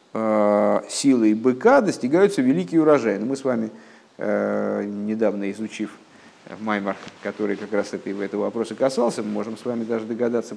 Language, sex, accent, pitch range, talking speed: Russian, male, native, 105-120 Hz, 135 wpm